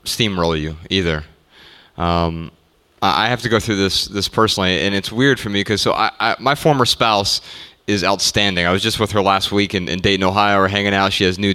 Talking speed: 225 wpm